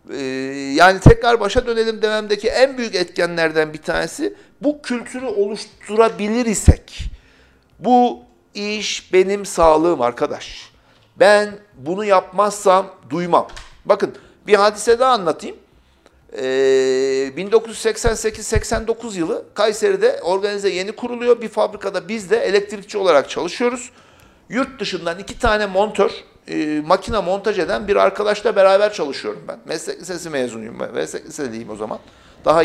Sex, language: male, Turkish